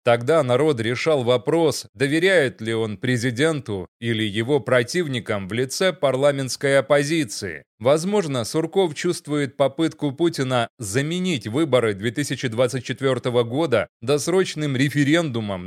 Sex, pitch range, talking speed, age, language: male, 120-155 Hz, 100 wpm, 30-49, Russian